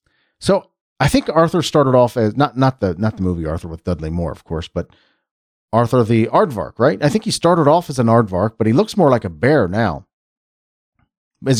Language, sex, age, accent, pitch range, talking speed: English, male, 40-59, American, 95-145 Hz, 210 wpm